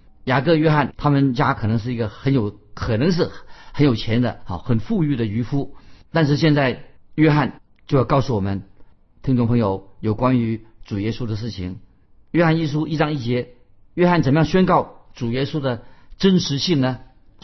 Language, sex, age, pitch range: Chinese, male, 50-69, 115-155 Hz